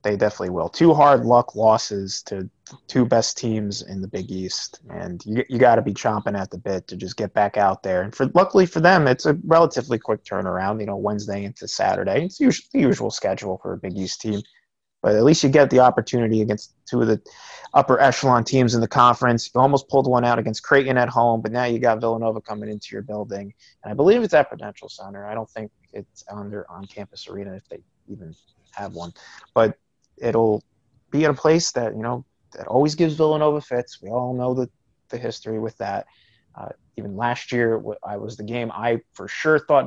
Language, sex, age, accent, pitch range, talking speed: English, male, 30-49, American, 105-135 Hz, 215 wpm